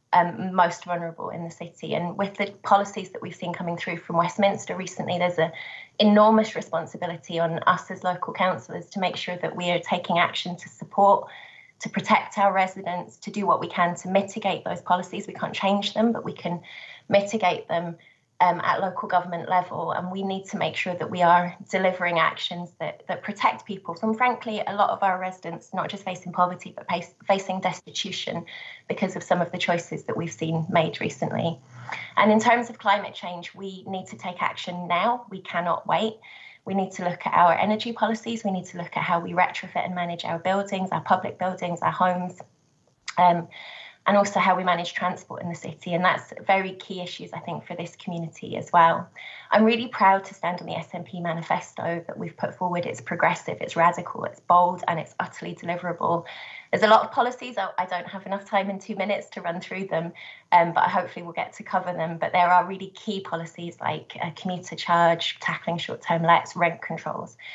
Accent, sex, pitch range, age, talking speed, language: British, female, 170-195 Hz, 20-39, 205 wpm, English